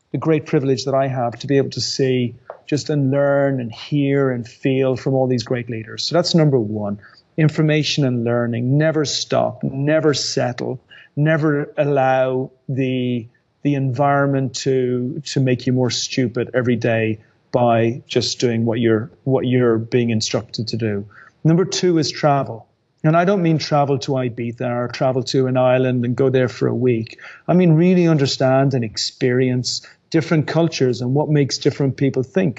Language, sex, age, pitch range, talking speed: English, male, 30-49, 125-150 Hz, 175 wpm